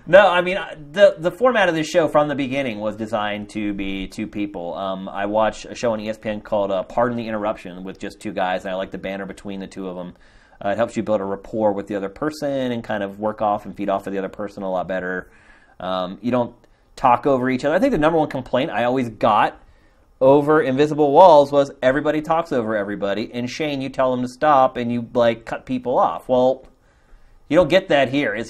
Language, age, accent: English, 30-49, American